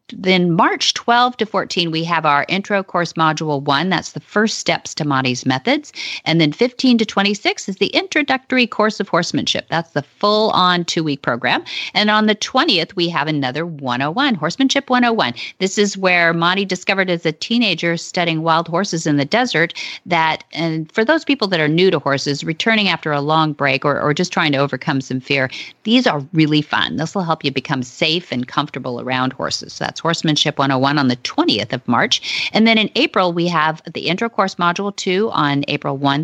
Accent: American